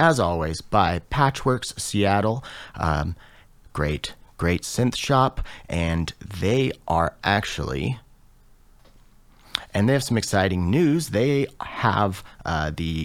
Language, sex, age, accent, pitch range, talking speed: English, male, 30-49, American, 85-120 Hz, 110 wpm